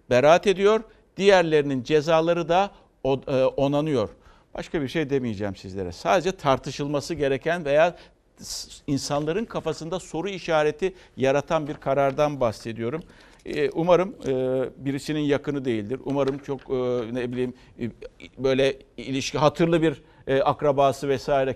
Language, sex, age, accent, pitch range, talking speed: Turkish, male, 60-79, native, 130-165 Hz, 105 wpm